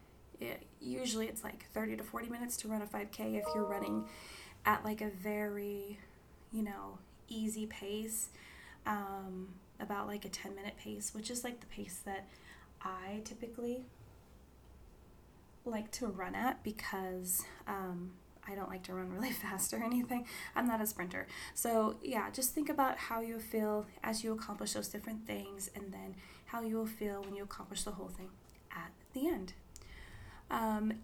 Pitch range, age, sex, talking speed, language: 190-225 Hz, 20-39, female, 165 wpm, English